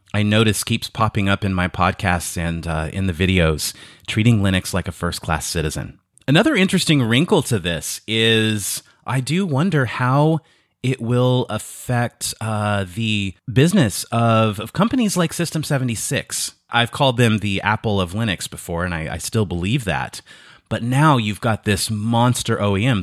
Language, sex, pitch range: English, male, 95-130 Hz